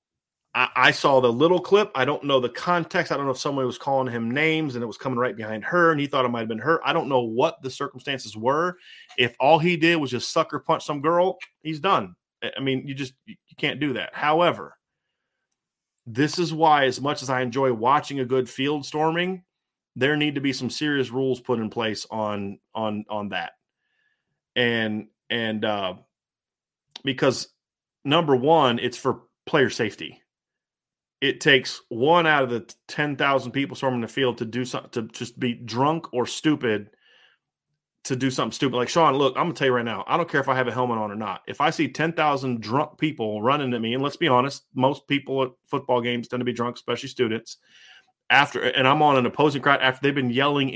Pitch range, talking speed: 120-150 Hz, 210 wpm